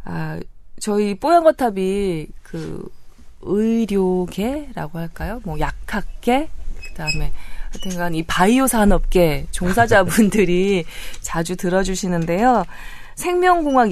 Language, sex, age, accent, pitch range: Korean, female, 20-39, native, 160-220 Hz